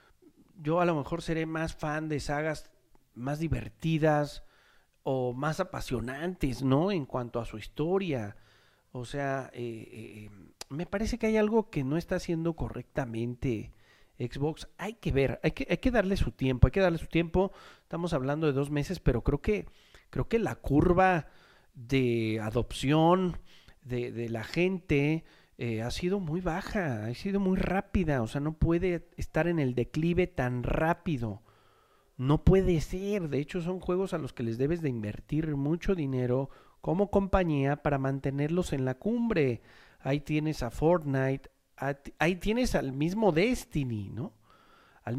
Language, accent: Spanish, Mexican